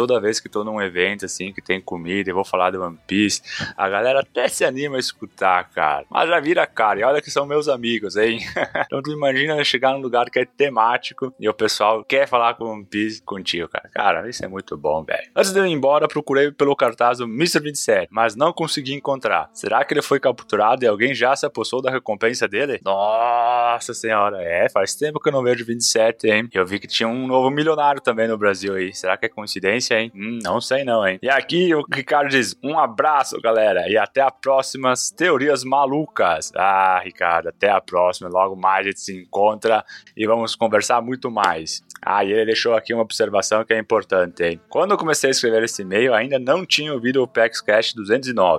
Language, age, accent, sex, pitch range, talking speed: Portuguese, 20-39, Brazilian, male, 105-135 Hz, 215 wpm